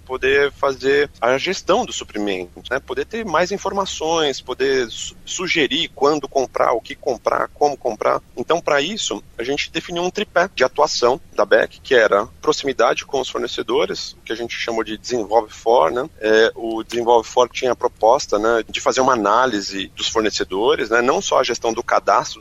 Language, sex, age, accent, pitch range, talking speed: Portuguese, male, 30-49, Brazilian, 115-170 Hz, 180 wpm